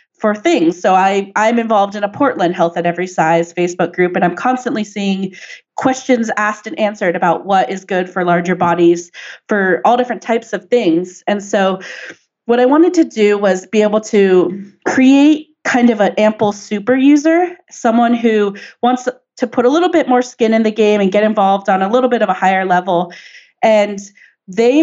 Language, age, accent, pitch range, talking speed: English, 30-49, American, 195-240 Hz, 195 wpm